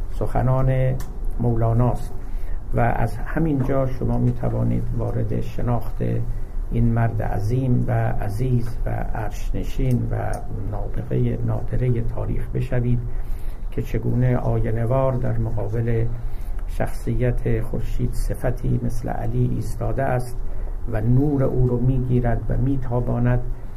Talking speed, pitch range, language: 110 wpm, 110-125 Hz, Persian